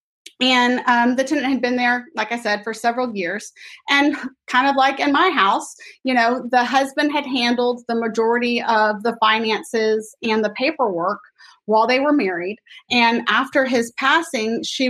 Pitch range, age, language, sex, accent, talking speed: 225-270 Hz, 30-49, English, female, American, 175 wpm